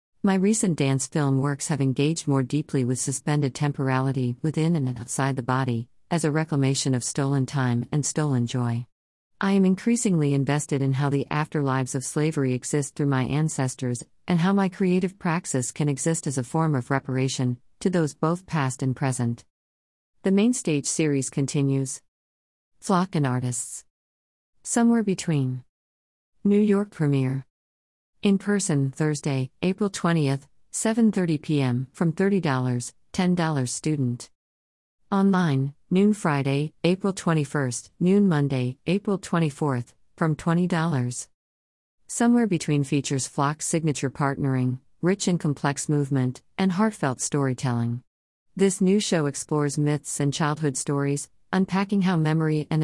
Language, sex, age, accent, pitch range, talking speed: English, female, 40-59, American, 130-170 Hz, 135 wpm